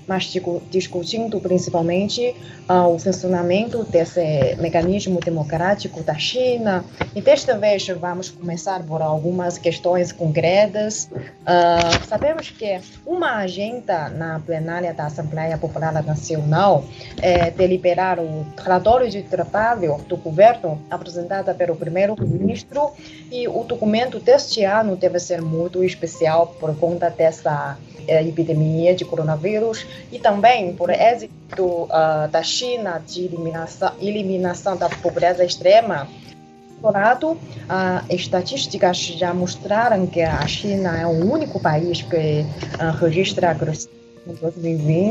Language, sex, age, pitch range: Chinese, female, 20-39, 165-195 Hz